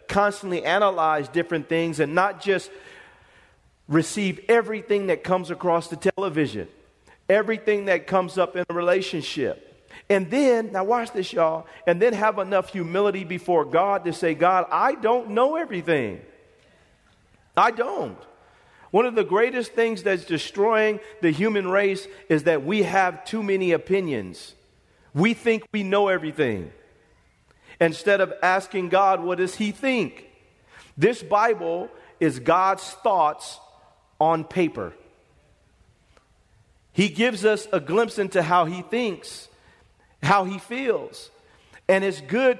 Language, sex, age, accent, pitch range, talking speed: English, male, 40-59, American, 180-220 Hz, 135 wpm